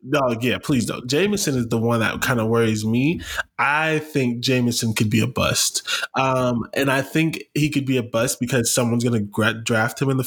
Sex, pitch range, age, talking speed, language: male, 115-145 Hz, 20-39, 220 wpm, English